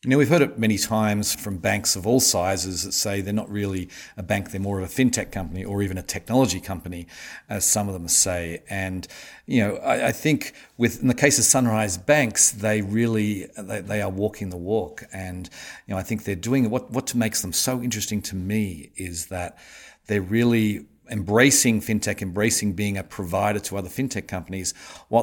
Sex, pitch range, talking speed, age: male, 95-110 Hz, 205 wpm, 50-69